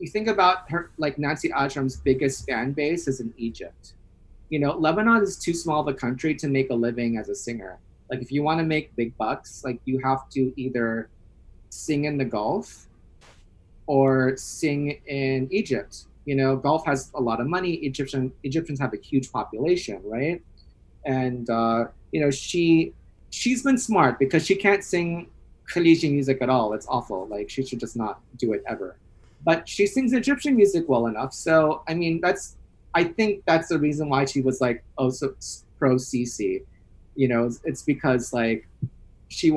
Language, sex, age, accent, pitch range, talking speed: English, male, 30-49, American, 120-160 Hz, 185 wpm